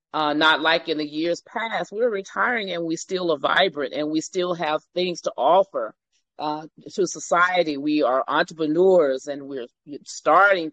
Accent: American